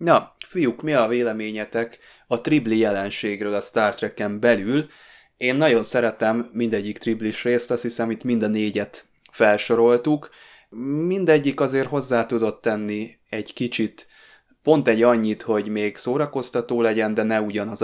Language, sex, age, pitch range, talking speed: Hungarian, male, 20-39, 105-120 Hz, 140 wpm